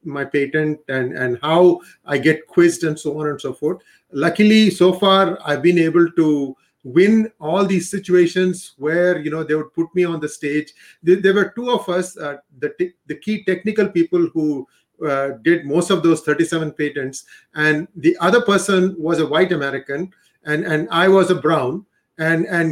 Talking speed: 190 wpm